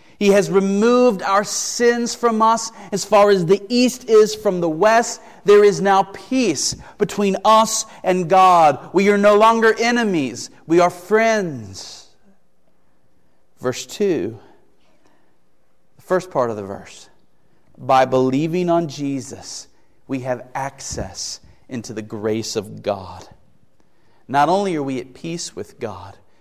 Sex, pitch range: male, 145-225 Hz